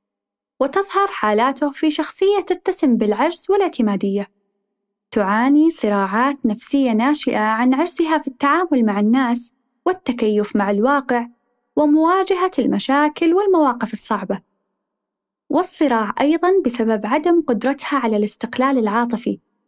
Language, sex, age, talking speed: Arabic, female, 10-29, 100 wpm